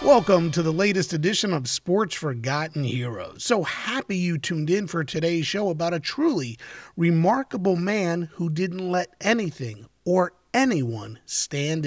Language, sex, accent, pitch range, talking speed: English, male, American, 145-205 Hz, 145 wpm